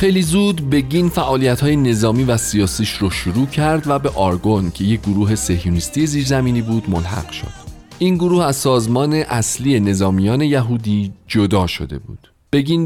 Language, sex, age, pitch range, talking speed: Persian, male, 40-59, 100-145 Hz, 150 wpm